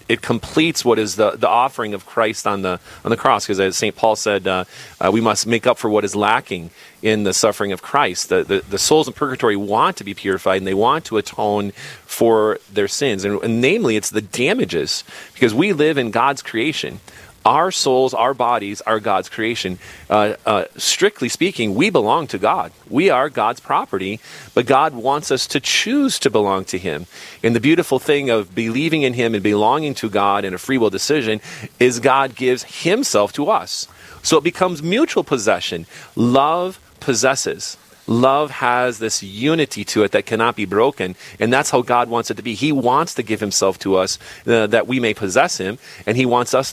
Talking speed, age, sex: 200 wpm, 40-59, male